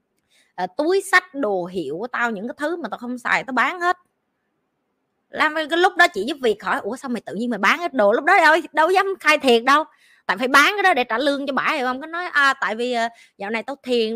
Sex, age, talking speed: female, 20-39, 265 wpm